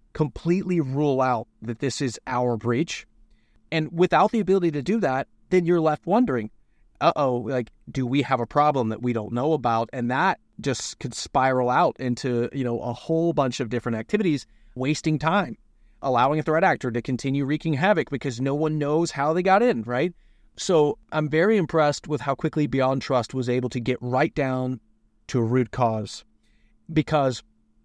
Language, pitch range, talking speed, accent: English, 120-155 Hz, 185 wpm, American